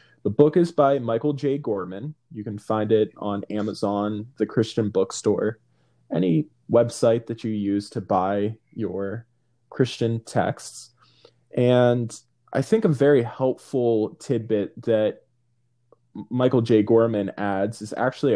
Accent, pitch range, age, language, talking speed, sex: American, 110-130 Hz, 20-39, English, 130 wpm, male